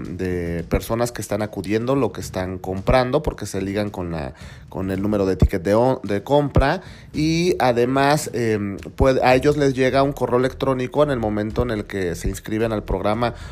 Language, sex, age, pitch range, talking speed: Spanish, male, 40-59, 100-130 Hz, 190 wpm